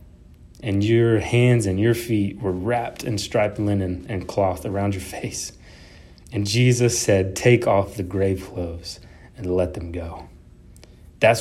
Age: 30-49